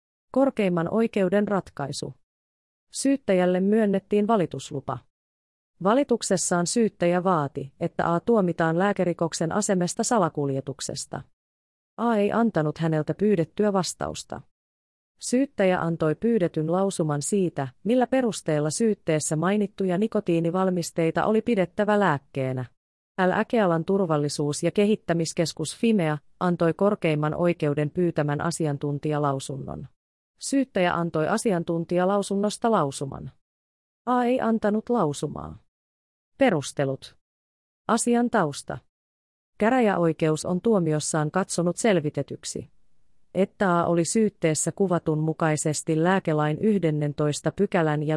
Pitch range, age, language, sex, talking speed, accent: 150-195 Hz, 30-49, Finnish, female, 90 wpm, native